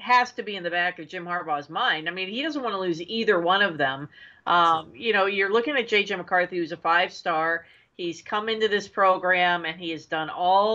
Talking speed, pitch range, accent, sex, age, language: 240 wpm, 170-235 Hz, American, female, 40-59, English